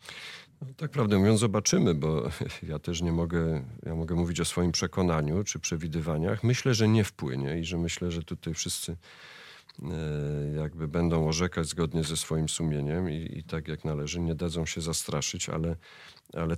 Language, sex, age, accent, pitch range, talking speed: Polish, male, 40-59, native, 85-115 Hz, 165 wpm